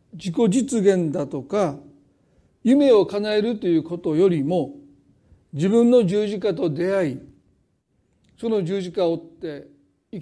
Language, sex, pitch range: Japanese, male, 155-220 Hz